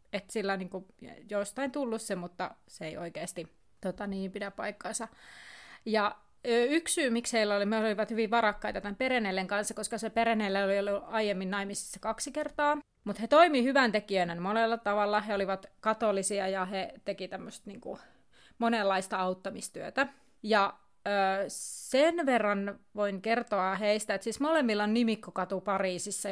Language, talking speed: Finnish, 150 wpm